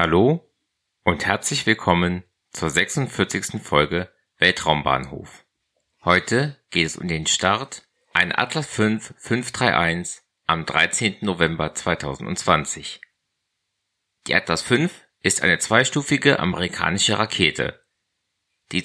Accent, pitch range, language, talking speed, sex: German, 90-115 Hz, German, 100 wpm, male